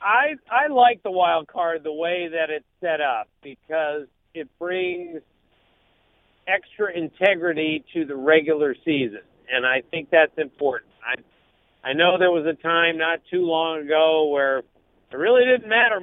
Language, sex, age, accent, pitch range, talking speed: English, male, 50-69, American, 155-185 Hz, 155 wpm